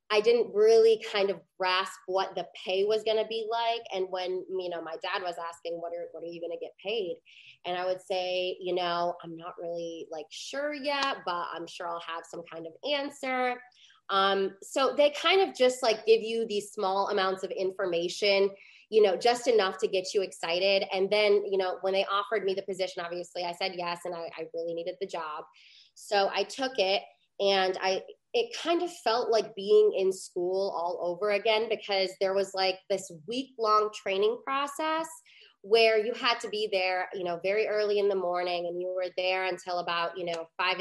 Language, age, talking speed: English, 20-39, 210 wpm